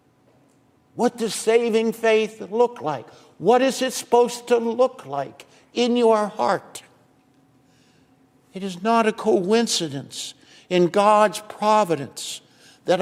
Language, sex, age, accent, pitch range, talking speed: English, male, 60-79, American, 165-215 Hz, 115 wpm